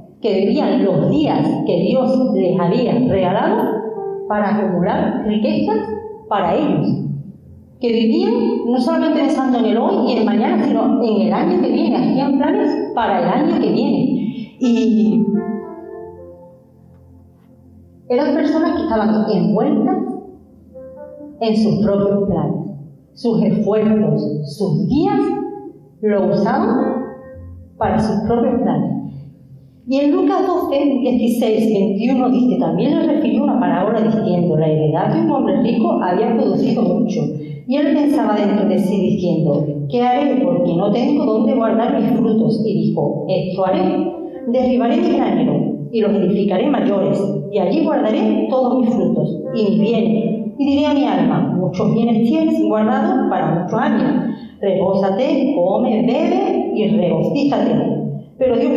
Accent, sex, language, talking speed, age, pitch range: American, female, Spanish, 140 wpm, 40-59, 200-260 Hz